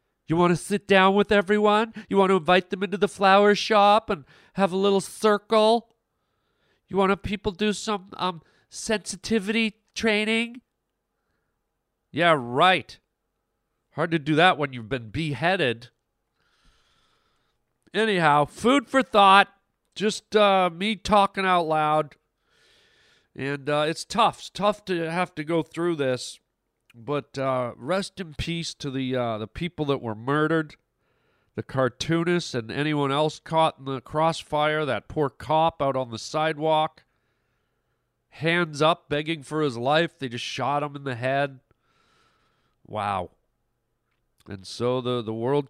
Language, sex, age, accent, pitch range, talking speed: English, male, 40-59, American, 135-195 Hz, 145 wpm